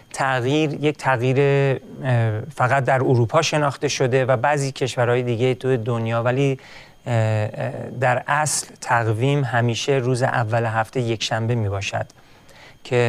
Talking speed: 125 wpm